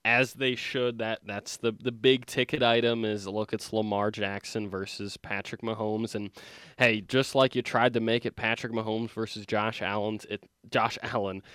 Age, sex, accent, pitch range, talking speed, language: 20-39, male, American, 105-120 Hz, 180 wpm, English